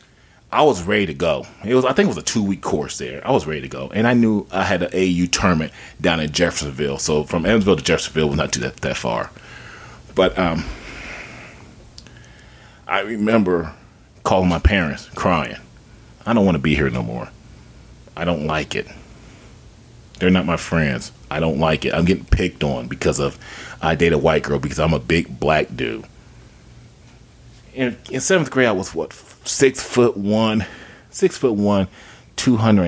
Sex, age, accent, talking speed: male, 30-49, American, 185 wpm